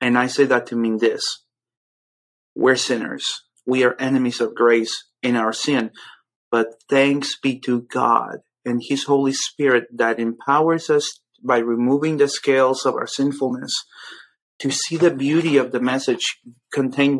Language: English